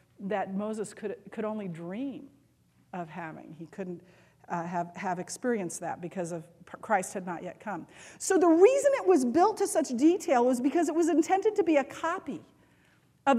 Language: English